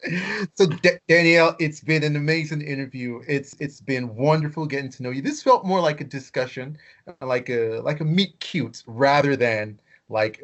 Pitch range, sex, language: 120-165 Hz, male, English